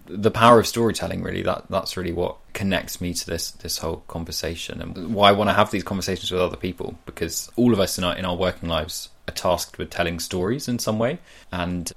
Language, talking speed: English, 230 wpm